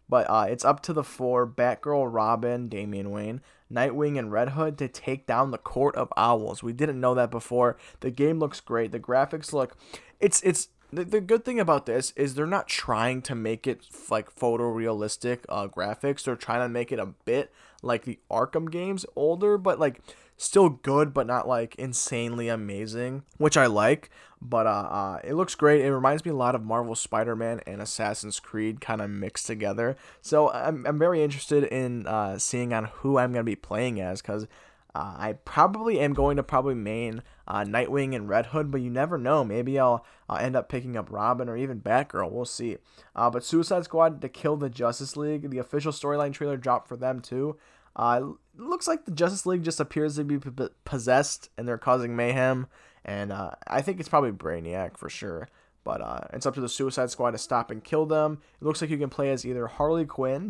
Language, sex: English, male